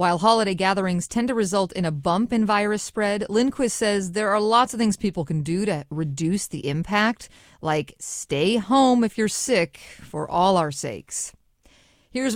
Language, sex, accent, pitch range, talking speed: English, female, American, 175-230 Hz, 180 wpm